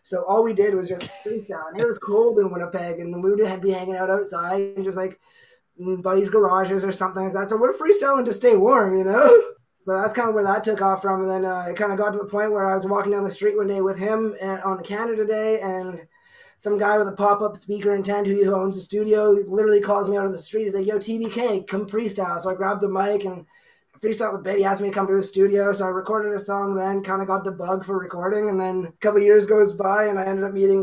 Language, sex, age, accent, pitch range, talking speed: English, male, 20-39, American, 175-205 Hz, 275 wpm